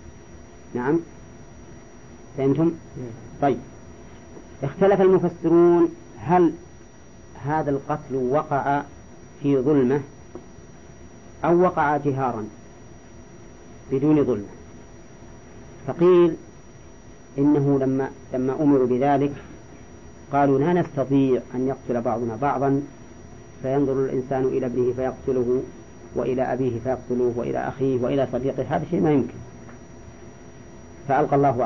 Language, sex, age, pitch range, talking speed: English, female, 40-59, 120-150 Hz, 90 wpm